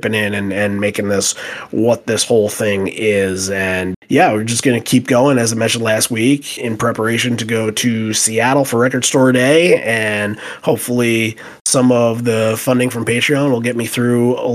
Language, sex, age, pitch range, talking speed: English, male, 30-49, 105-125 Hz, 190 wpm